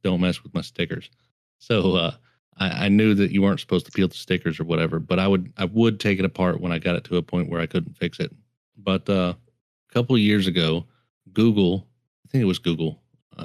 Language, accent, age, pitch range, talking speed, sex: English, American, 30-49, 85-100 Hz, 240 wpm, male